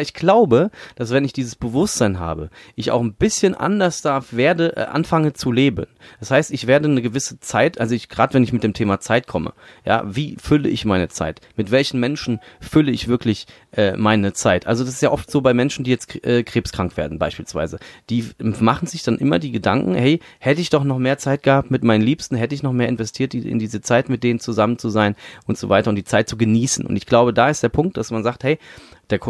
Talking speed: 235 wpm